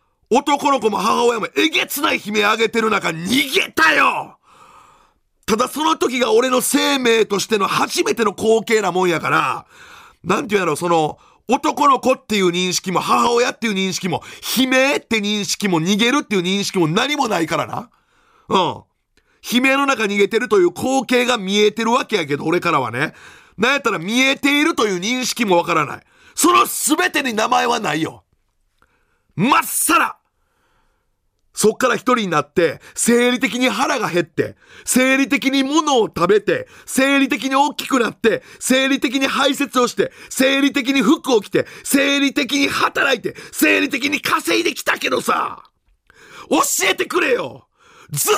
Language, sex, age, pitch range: Japanese, male, 40-59, 215-305 Hz